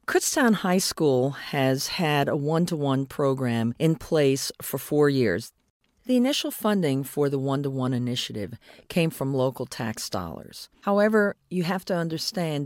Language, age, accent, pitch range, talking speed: English, 50-69, American, 130-175 Hz, 140 wpm